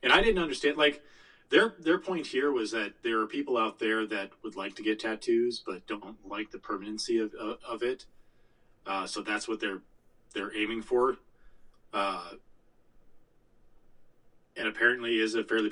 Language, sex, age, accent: English, male, 30-49, American